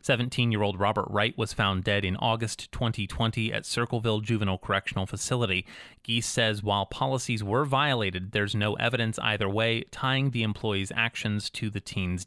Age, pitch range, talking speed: 30-49, 115-185 Hz, 155 wpm